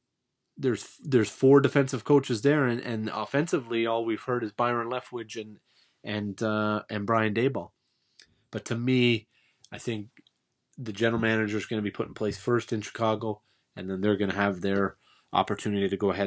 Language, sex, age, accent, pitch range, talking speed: English, male, 30-49, American, 100-115 Hz, 185 wpm